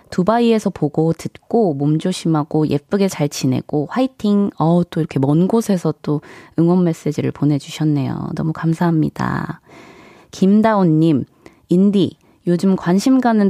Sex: female